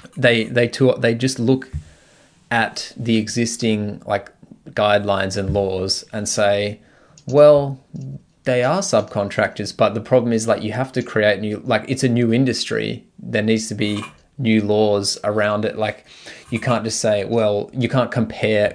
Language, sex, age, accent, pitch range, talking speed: English, male, 20-39, Australian, 100-120 Hz, 165 wpm